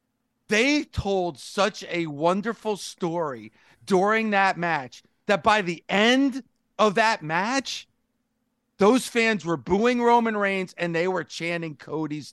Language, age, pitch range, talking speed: English, 40-59, 185-235 Hz, 130 wpm